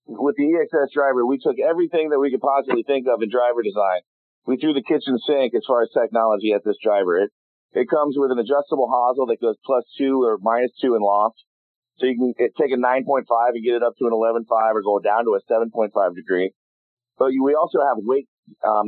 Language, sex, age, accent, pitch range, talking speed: English, male, 40-59, American, 115-145 Hz, 225 wpm